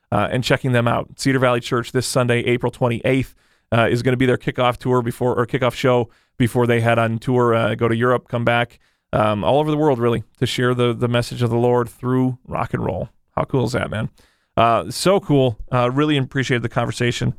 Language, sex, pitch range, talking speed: English, male, 120-135 Hz, 230 wpm